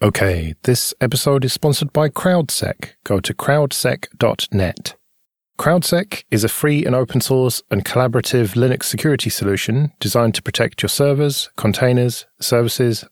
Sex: male